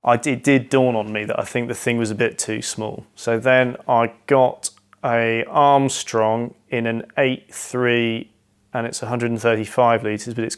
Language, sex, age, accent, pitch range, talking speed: English, male, 30-49, British, 110-125 Hz, 175 wpm